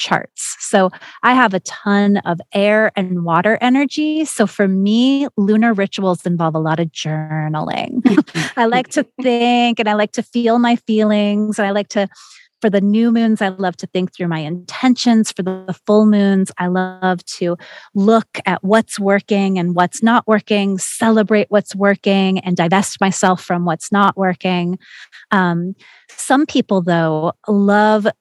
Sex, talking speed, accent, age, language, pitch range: female, 160 wpm, American, 30-49, English, 180-215 Hz